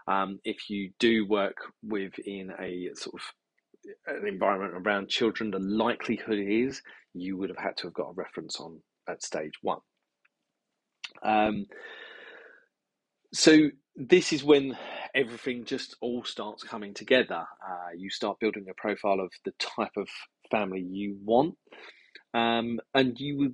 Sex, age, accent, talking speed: male, 30-49, British, 145 wpm